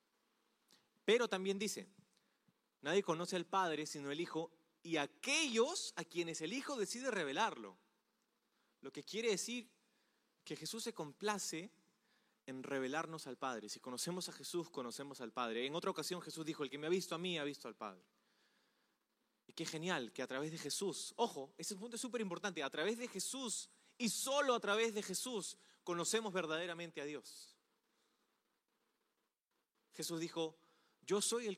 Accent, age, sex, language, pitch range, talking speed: Argentinian, 20-39, male, Spanish, 155-225 Hz, 165 wpm